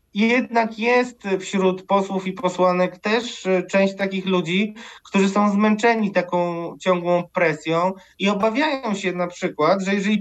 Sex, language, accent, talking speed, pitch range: male, Polish, native, 135 wpm, 175-215 Hz